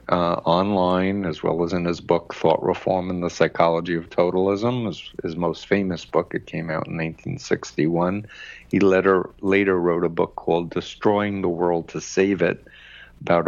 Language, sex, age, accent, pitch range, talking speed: English, male, 60-79, American, 85-95 Hz, 175 wpm